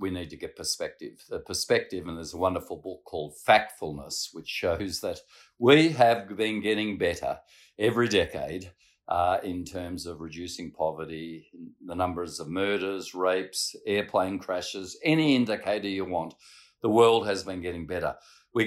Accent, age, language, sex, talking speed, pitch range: Australian, 50-69, English, male, 155 wpm, 85-105 Hz